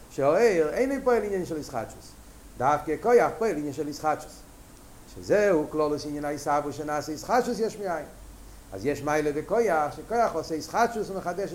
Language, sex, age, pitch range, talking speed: Hebrew, male, 50-69, 155-215 Hz, 150 wpm